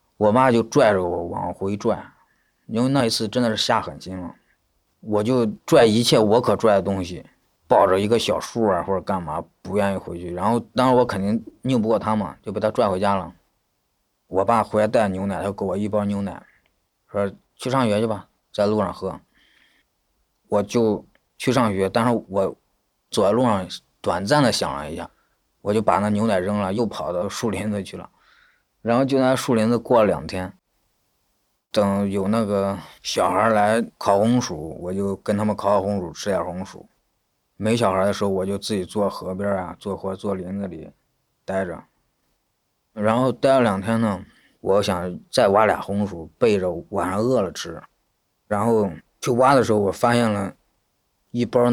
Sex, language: male, Chinese